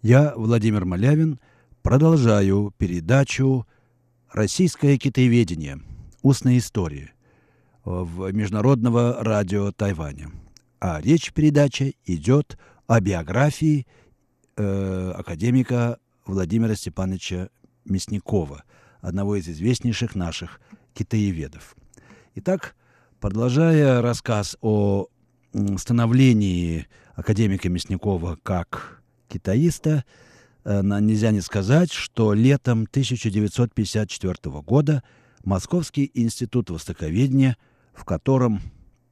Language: Russian